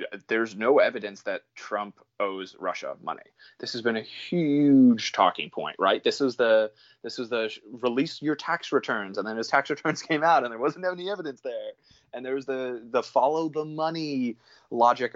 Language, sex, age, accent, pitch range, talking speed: English, male, 20-39, American, 120-180 Hz, 190 wpm